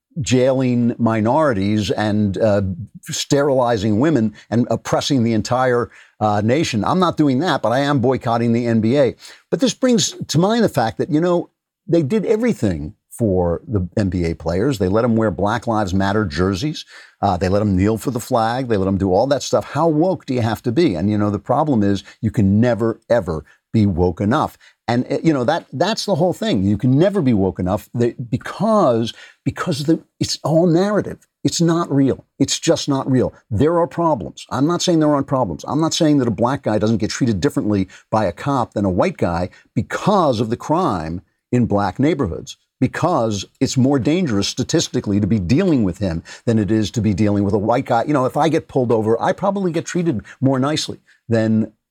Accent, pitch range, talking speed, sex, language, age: American, 105-150 Hz, 205 wpm, male, English, 50-69